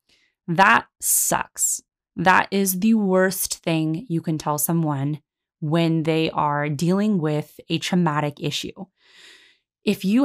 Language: English